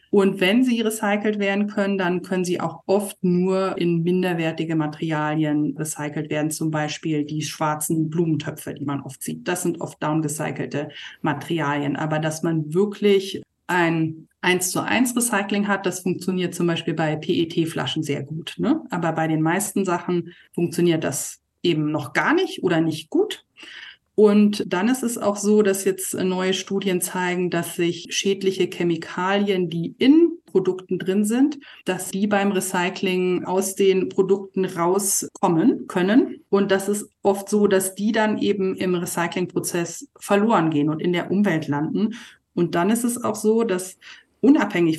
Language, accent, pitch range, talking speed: German, German, 160-200 Hz, 155 wpm